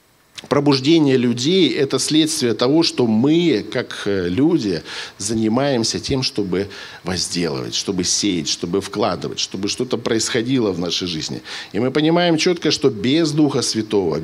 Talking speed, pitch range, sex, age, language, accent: 130 wpm, 110-155 Hz, male, 50-69, Russian, native